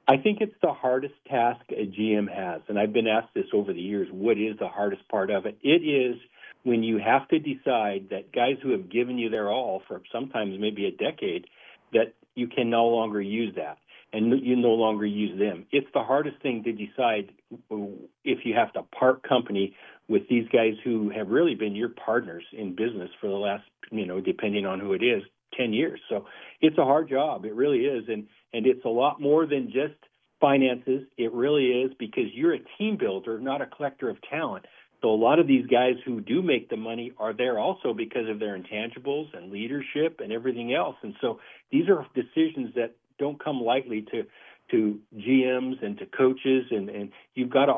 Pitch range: 110-140 Hz